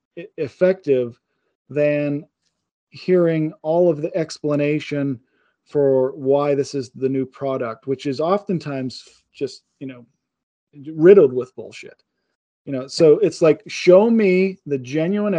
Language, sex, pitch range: English, male, 140-200 Hz